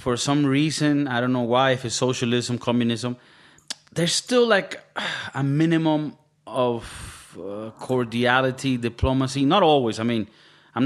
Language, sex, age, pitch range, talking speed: English, male, 30-49, 115-150 Hz, 140 wpm